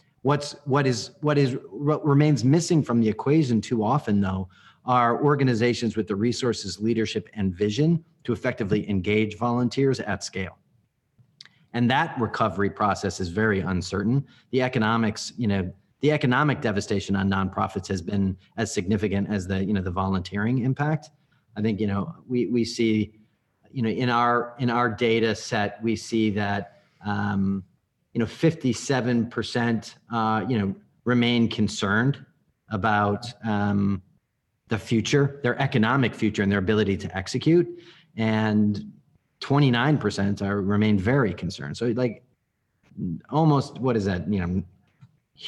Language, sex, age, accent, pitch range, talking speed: English, male, 40-59, American, 105-135 Hz, 145 wpm